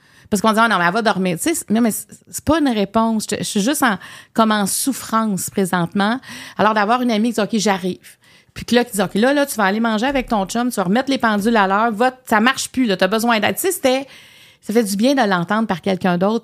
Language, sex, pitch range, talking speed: French, female, 190-235 Hz, 275 wpm